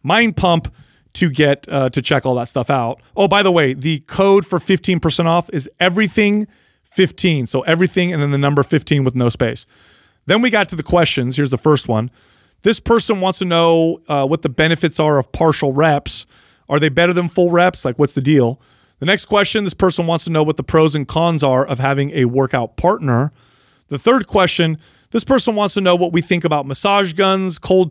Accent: American